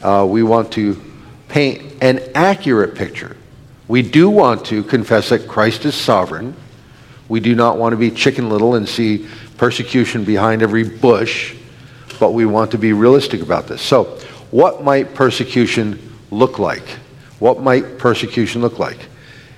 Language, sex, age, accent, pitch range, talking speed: English, male, 50-69, American, 110-130 Hz, 155 wpm